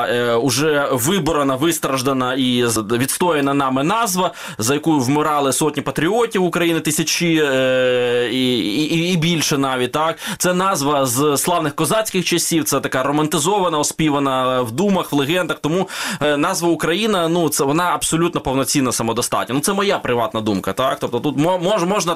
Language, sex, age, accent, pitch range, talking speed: Ukrainian, male, 20-39, native, 130-170 Hz, 145 wpm